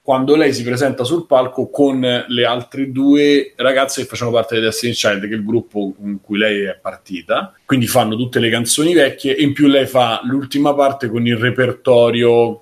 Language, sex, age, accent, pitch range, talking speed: Italian, male, 30-49, native, 105-125 Hz, 200 wpm